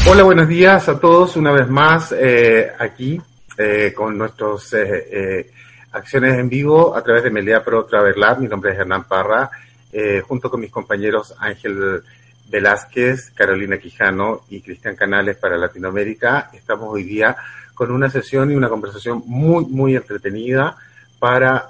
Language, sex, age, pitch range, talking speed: Spanish, male, 30-49, 120-140 Hz, 160 wpm